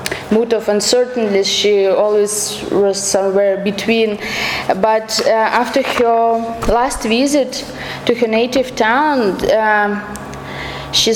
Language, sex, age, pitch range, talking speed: English, female, 20-39, 210-245 Hz, 100 wpm